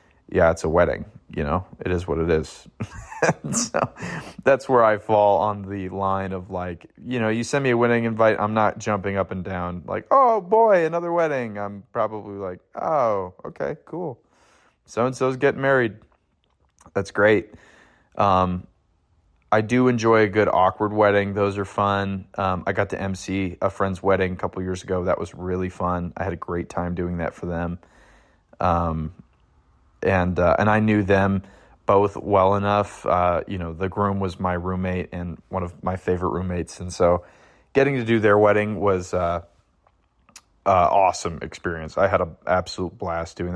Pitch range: 90-105 Hz